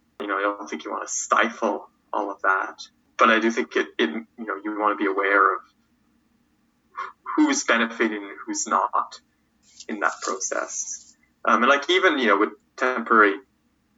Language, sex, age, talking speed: English, male, 20-39, 180 wpm